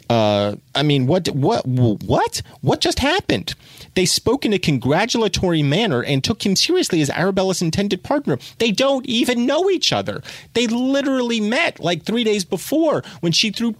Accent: American